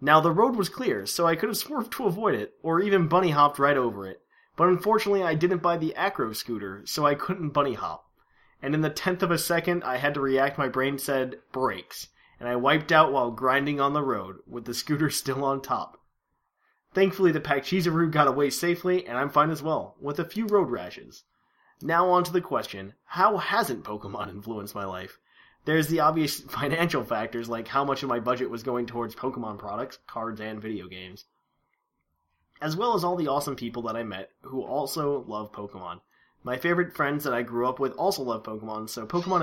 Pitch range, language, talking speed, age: 120-170 Hz, English, 205 wpm, 20-39